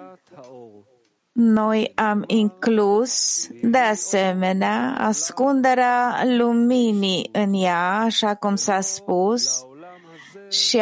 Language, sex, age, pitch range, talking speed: English, female, 30-49, 185-230 Hz, 80 wpm